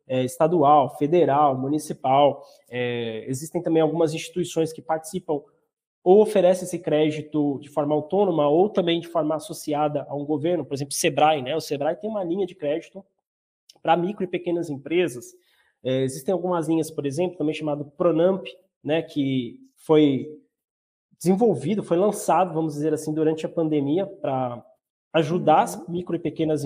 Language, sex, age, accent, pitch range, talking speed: Portuguese, male, 20-39, Brazilian, 150-185 Hz, 150 wpm